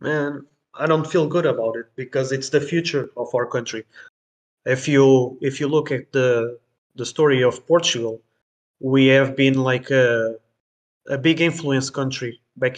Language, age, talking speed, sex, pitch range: Hebrew, 20-39, 165 wpm, male, 125-145 Hz